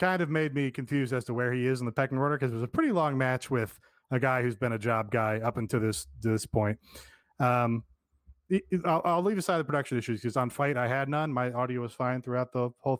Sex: male